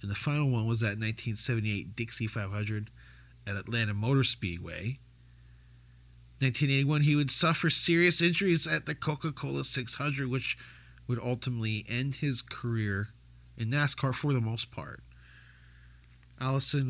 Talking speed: 130 wpm